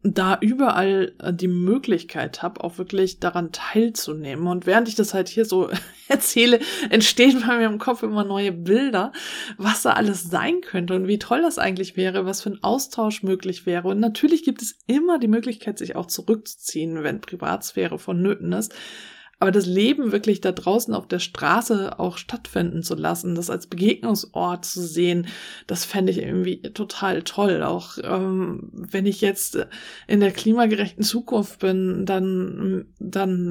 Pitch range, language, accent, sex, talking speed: 185-220 Hz, German, German, female, 165 wpm